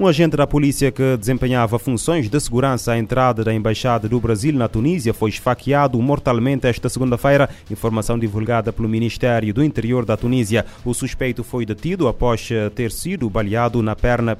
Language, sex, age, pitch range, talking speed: Portuguese, male, 30-49, 110-130 Hz, 165 wpm